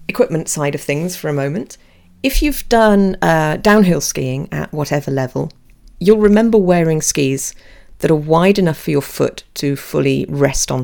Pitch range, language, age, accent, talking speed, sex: 135-170 Hz, English, 40-59, British, 170 wpm, female